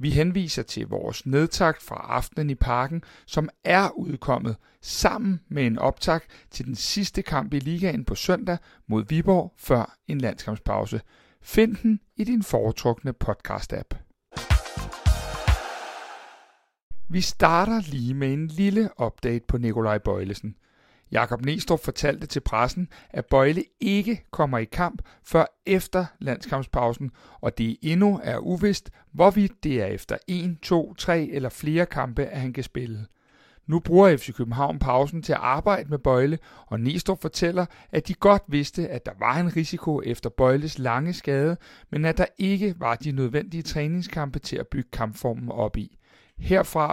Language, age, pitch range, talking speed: Danish, 60-79, 120-180 Hz, 150 wpm